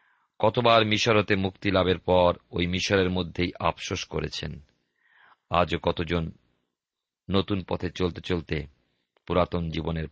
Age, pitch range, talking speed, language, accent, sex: 50-69, 80-100 Hz, 105 wpm, Bengali, native, male